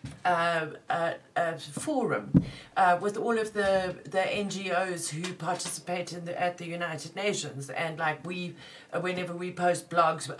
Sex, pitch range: female, 160-195 Hz